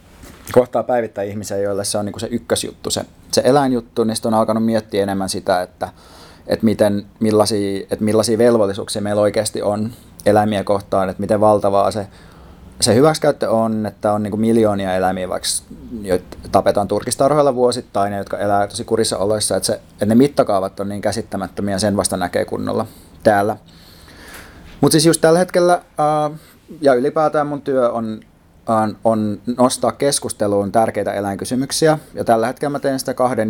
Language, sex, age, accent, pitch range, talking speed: Finnish, male, 30-49, native, 100-120 Hz, 165 wpm